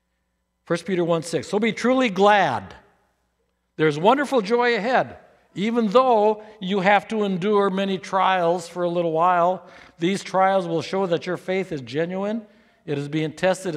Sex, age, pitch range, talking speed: male, 60-79, 150-215 Hz, 160 wpm